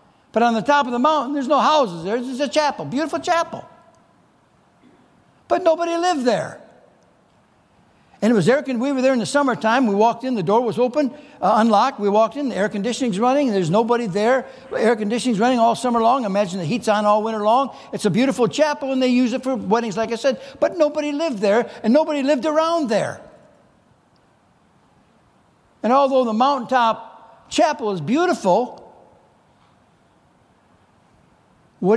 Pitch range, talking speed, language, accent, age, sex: 215-285 Hz, 175 wpm, English, American, 60-79, male